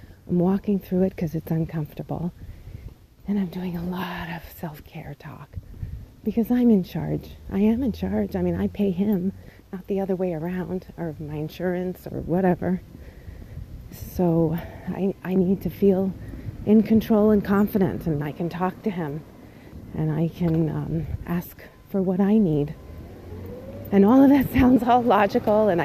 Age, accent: 30-49, American